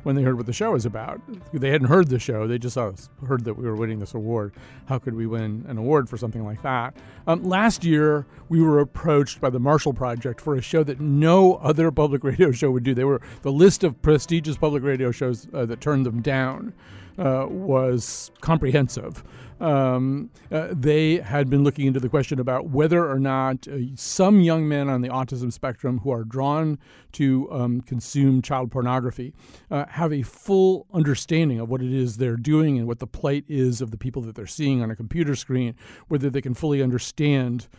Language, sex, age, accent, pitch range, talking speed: English, male, 40-59, American, 125-150 Hz, 205 wpm